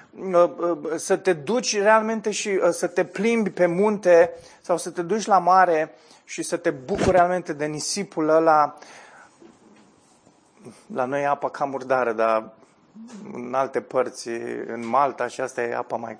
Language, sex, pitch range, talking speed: Romanian, male, 115-175 Hz, 150 wpm